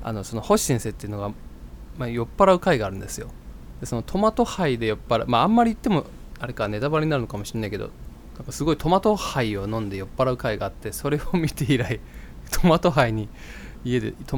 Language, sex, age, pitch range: Japanese, male, 20-39, 95-140 Hz